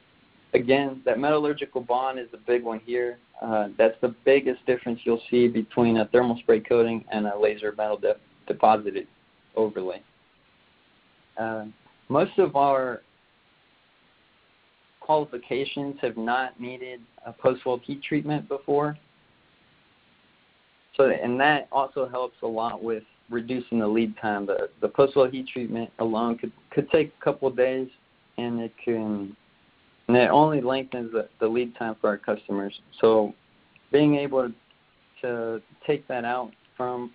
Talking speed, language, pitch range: 145 wpm, English, 115-135 Hz